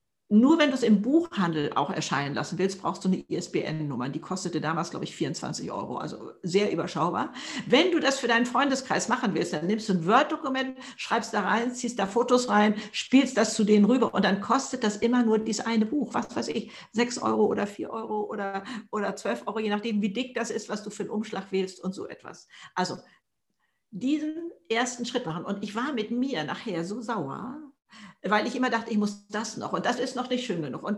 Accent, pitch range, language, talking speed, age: German, 195-245 Hz, German, 220 wpm, 60-79